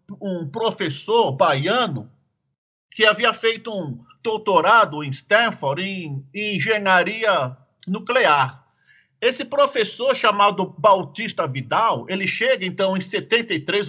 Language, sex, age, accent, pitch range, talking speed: Portuguese, male, 50-69, Brazilian, 185-245 Hz, 105 wpm